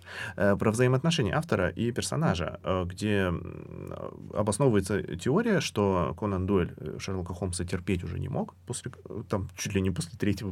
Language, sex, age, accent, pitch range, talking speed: Russian, male, 20-39, native, 90-115 Hz, 135 wpm